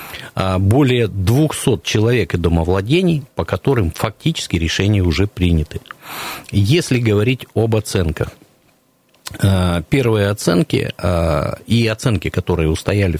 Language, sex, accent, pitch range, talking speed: Russian, male, native, 90-115 Hz, 95 wpm